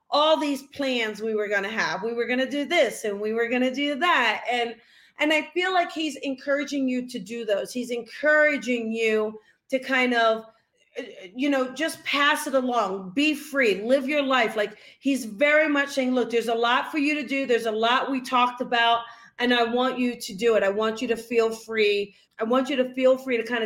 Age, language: 40-59, English